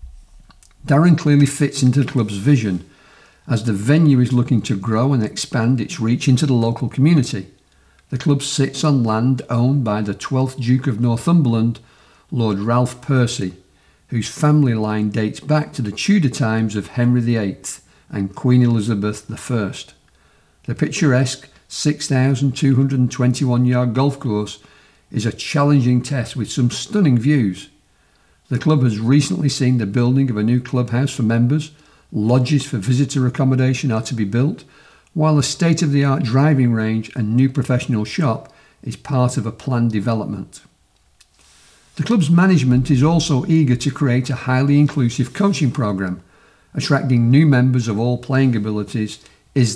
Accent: British